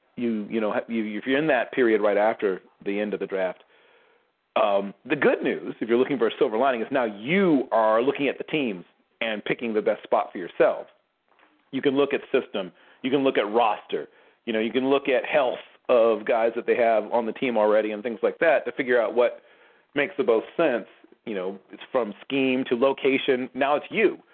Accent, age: American, 40-59